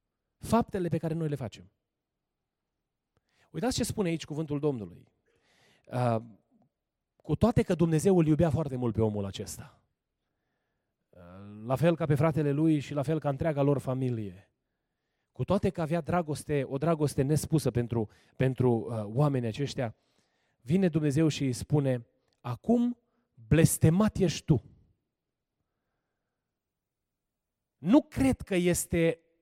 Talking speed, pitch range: 120 wpm, 135-195 Hz